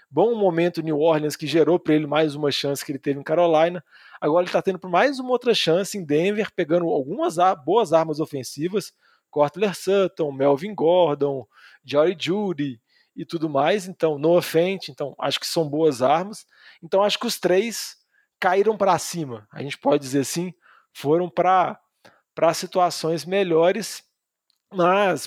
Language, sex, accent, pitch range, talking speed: Portuguese, male, Brazilian, 150-185 Hz, 165 wpm